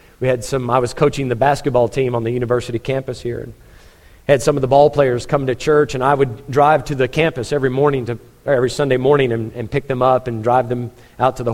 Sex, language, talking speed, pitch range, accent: male, English, 250 wpm, 120-145 Hz, American